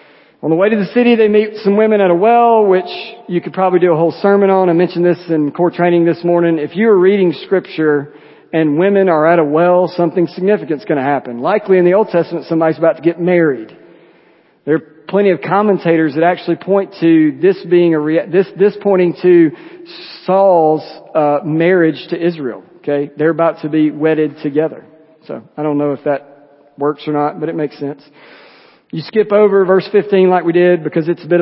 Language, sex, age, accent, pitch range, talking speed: English, male, 40-59, American, 155-185 Hz, 210 wpm